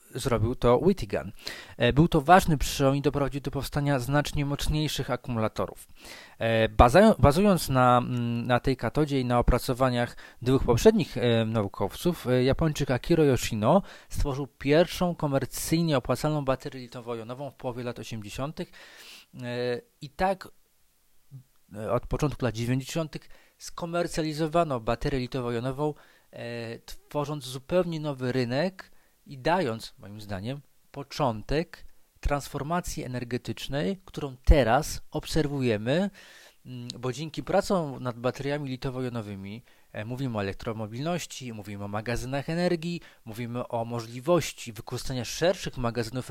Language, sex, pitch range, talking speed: Polish, male, 120-150 Hz, 110 wpm